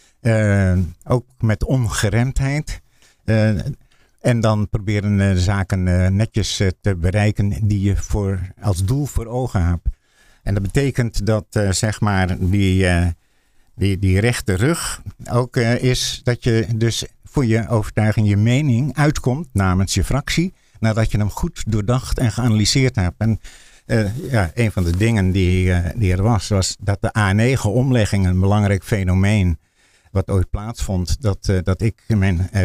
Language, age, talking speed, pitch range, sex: Dutch, 60-79, 160 wpm, 95-125 Hz, male